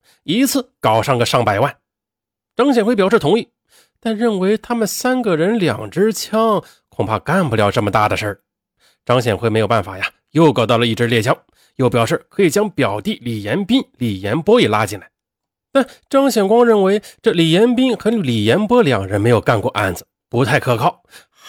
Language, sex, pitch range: Chinese, male, 110-170 Hz